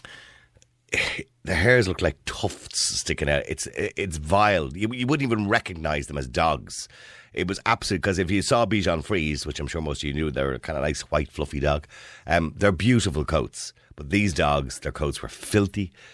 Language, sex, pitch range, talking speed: English, male, 70-95 Hz, 200 wpm